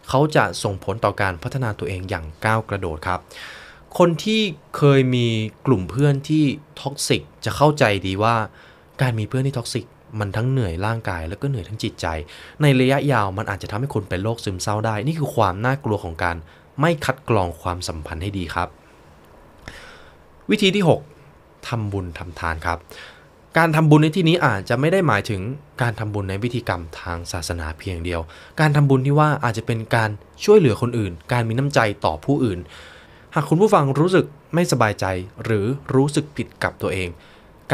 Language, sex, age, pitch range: Thai, male, 20-39, 90-140 Hz